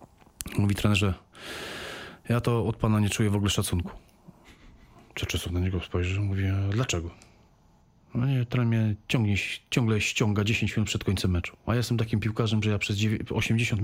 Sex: male